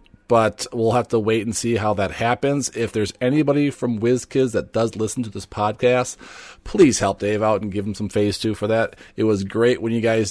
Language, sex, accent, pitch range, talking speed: English, male, American, 95-115 Hz, 225 wpm